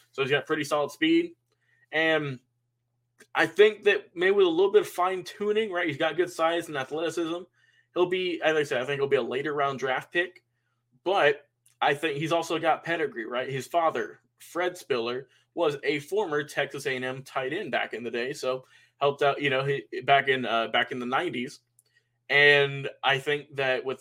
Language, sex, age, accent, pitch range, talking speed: English, male, 20-39, American, 130-175 Hz, 190 wpm